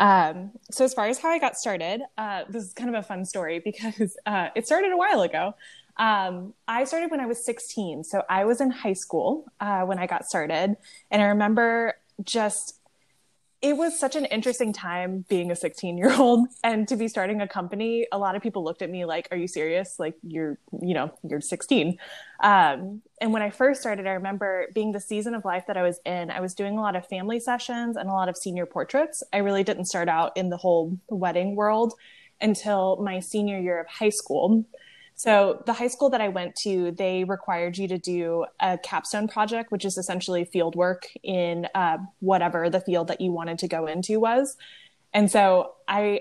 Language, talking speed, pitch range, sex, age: English, 210 wpm, 180-225 Hz, female, 10-29